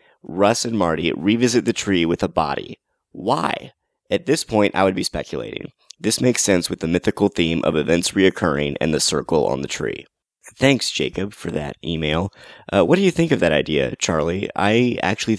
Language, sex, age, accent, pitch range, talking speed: English, male, 30-49, American, 85-105 Hz, 190 wpm